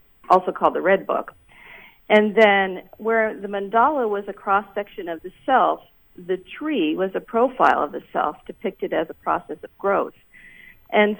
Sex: female